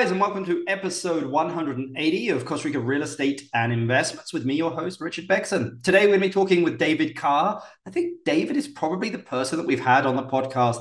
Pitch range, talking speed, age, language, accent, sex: 125-165 Hz, 230 wpm, 30-49, English, British, male